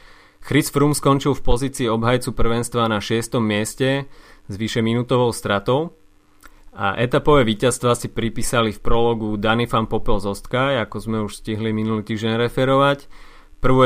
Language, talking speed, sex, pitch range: Slovak, 145 wpm, male, 110-125 Hz